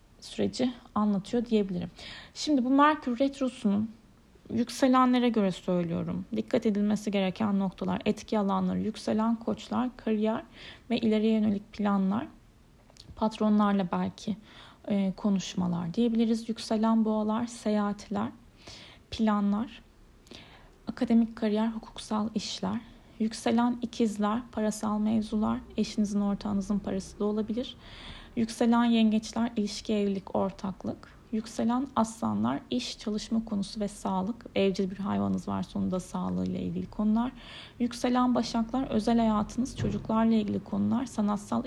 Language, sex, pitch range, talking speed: Turkish, female, 200-235 Hz, 105 wpm